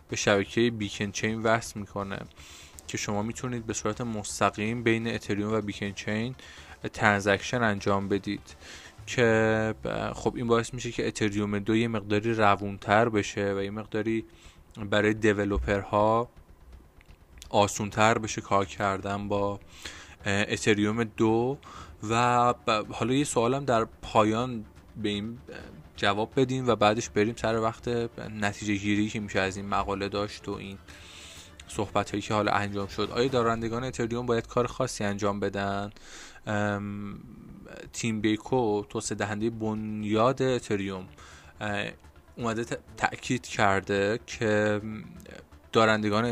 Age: 20-39